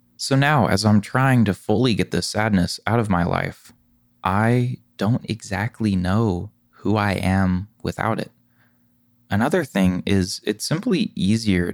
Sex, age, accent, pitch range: male, 20-39, American, 90-120 Hz